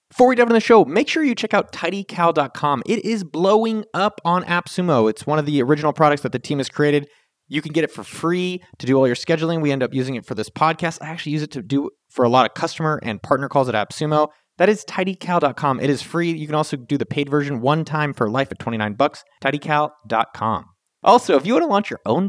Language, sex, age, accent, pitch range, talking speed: English, male, 30-49, American, 140-185 Hz, 250 wpm